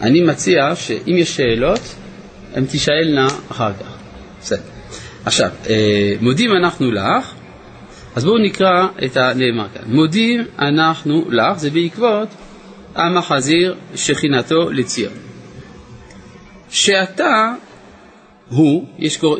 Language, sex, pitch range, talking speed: Hebrew, male, 130-190 Hz, 95 wpm